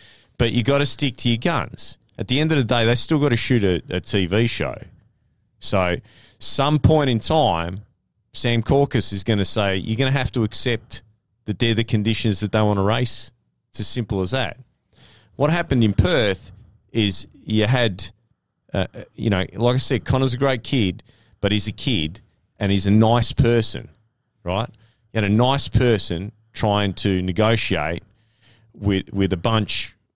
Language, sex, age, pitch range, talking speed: English, male, 30-49, 100-120 Hz, 185 wpm